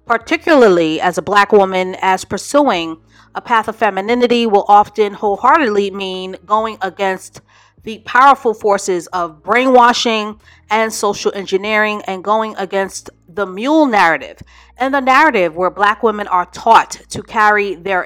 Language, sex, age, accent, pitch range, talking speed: English, female, 40-59, American, 190-235 Hz, 140 wpm